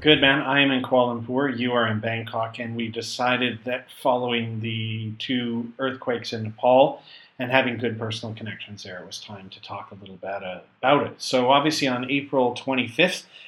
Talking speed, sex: 185 wpm, male